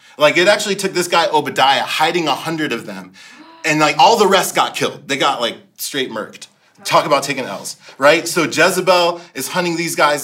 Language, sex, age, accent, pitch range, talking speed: English, male, 30-49, American, 145-170 Hz, 205 wpm